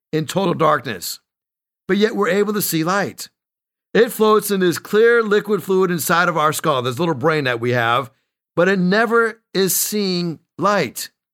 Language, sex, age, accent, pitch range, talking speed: English, male, 50-69, American, 155-210 Hz, 175 wpm